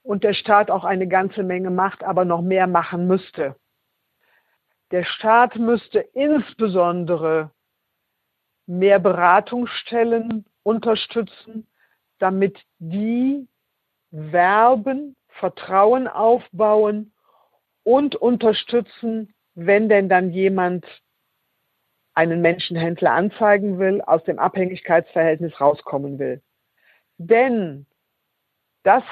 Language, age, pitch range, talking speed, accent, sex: German, 50-69, 180-225 Hz, 85 wpm, German, female